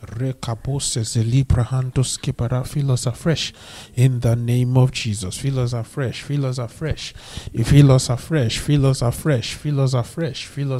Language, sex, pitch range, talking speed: English, male, 115-135 Hz, 160 wpm